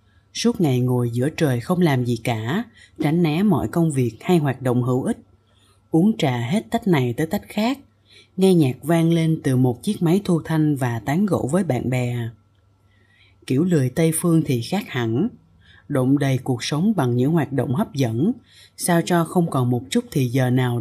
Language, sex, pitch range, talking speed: Vietnamese, female, 120-165 Hz, 200 wpm